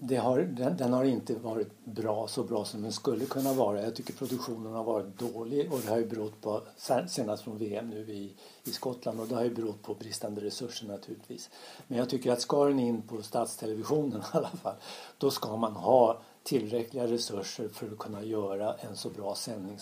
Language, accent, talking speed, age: Swedish, native, 205 wpm, 60-79